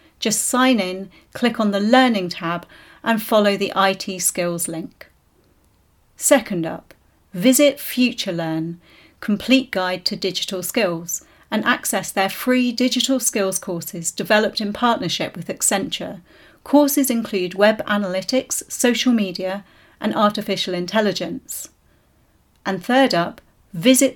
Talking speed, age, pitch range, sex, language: 120 wpm, 40-59, 185-245 Hz, female, English